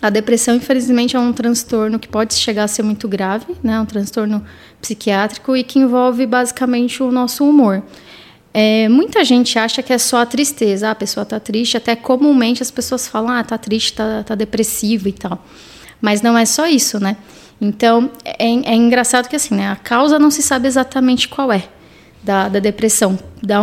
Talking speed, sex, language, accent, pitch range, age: 190 wpm, female, Portuguese, Brazilian, 215-250 Hz, 20-39